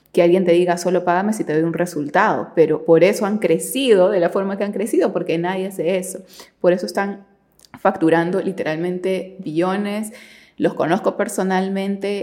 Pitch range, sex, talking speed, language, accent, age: 170-210 Hz, female, 170 wpm, Spanish, Venezuelan, 20-39